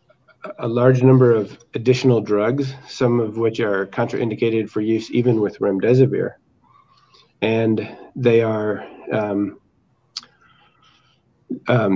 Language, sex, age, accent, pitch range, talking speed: English, male, 40-59, American, 110-130 Hz, 105 wpm